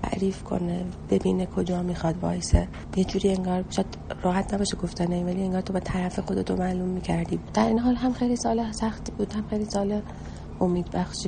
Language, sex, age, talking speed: Persian, female, 30-49, 175 wpm